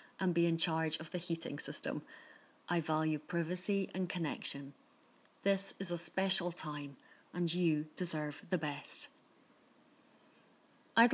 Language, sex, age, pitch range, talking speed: English, female, 30-49, 155-195 Hz, 130 wpm